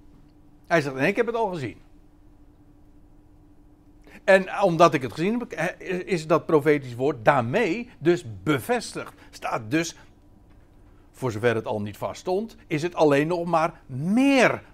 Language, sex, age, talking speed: Dutch, male, 60-79, 150 wpm